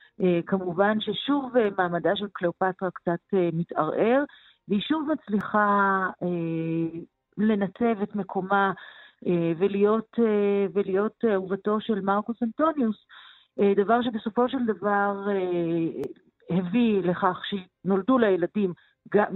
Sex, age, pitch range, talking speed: female, 40-59, 165-210 Hz, 110 wpm